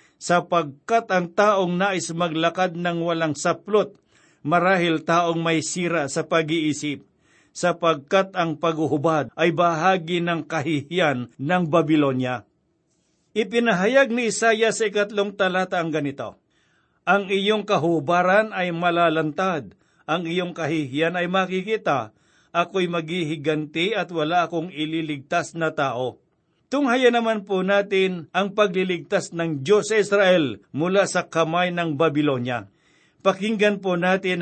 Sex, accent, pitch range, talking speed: male, native, 160-195 Hz, 115 wpm